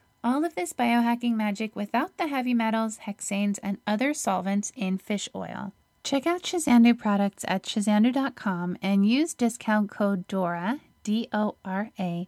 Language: English